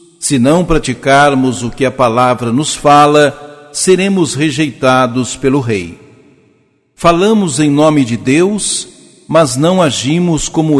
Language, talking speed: Portuguese, 120 wpm